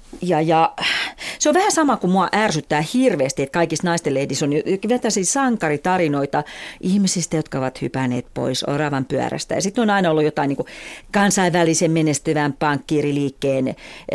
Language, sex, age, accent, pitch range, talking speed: Finnish, female, 40-59, native, 145-205 Hz, 150 wpm